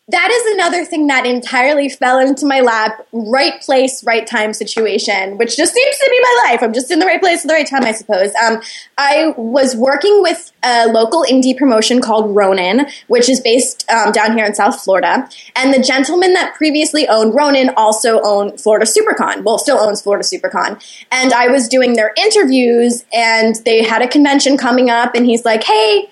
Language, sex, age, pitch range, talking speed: English, female, 10-29, 225-290 Hz, 200 wpm